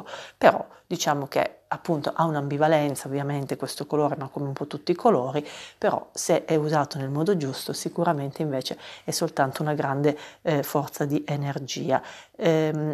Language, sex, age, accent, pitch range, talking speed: Italian, female, 40-59, native, 150-170 Hz, 160 wpm